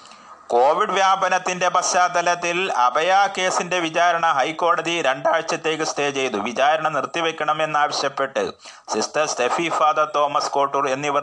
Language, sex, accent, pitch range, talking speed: Malayalam, male, native, 135-175 Hz, 100 wpm